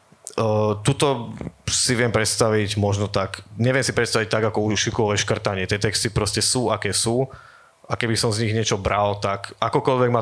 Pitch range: 105-115 Hz